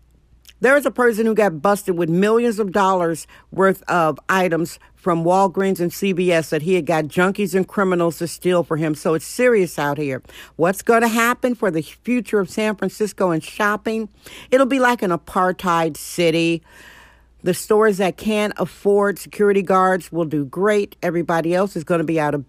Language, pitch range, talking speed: English, 165-215 Hz, 185 wpm